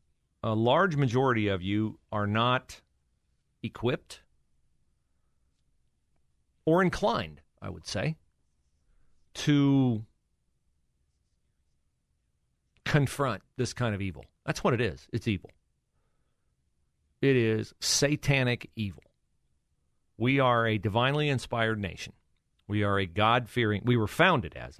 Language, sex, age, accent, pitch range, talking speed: English, male, 40-59, American, 75-120 Hz, 105 wpm